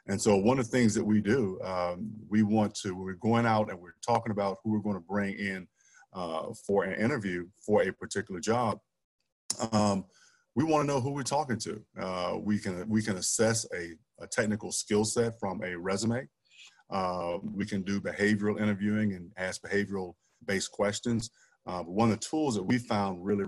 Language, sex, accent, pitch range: English, male, American, 100-110 Hz